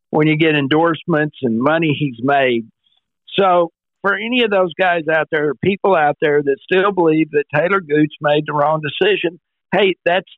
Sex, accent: male, American